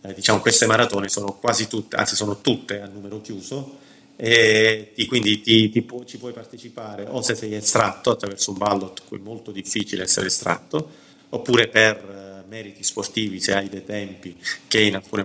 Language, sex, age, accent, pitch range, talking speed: Italian, male, 30-49, native, 95-110 Hz, 185 wpm